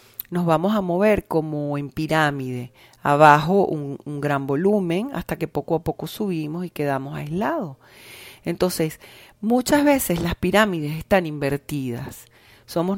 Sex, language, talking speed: female, Spanish, 135 wpm